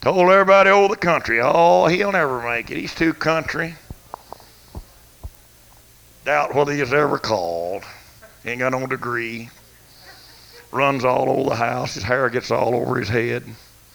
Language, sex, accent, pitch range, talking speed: English, male, American, 110-140 Hz, 145 wpm